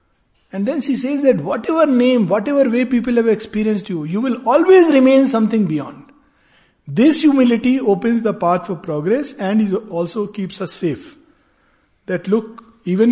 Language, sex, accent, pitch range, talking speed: Hindi, male, native, 140-215 Hz, 160 wpm